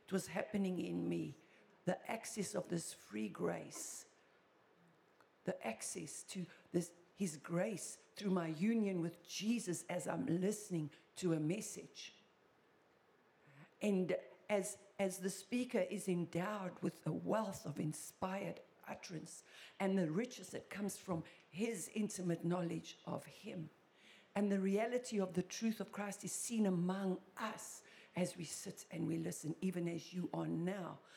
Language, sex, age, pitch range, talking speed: English, female, 60-79, 170-205 Hz, 140 wpm